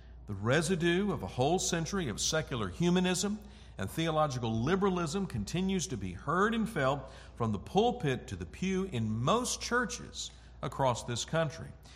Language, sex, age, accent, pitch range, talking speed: English, male, 50-69, American, 105-155 Hz, 150 wpm